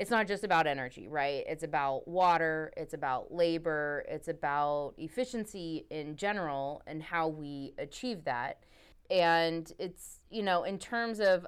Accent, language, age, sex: American, English, 20-39, female